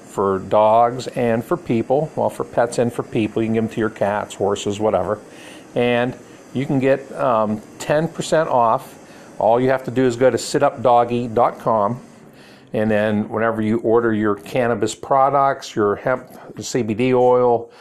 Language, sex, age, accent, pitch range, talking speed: English, male, 50-69, American, 105-130 Hz, 165 wpm